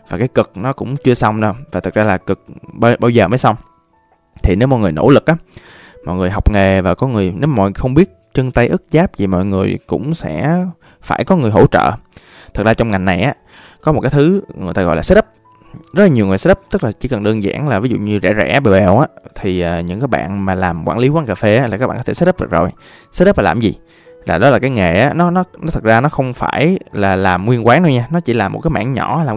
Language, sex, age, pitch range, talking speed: Vietnamese, male, 20-39, 100-140 Hz, 280 wpm